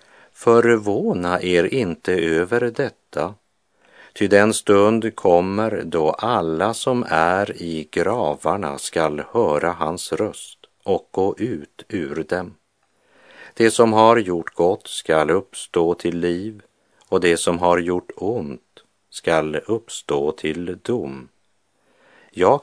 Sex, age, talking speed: male, 50-69, 115 wpm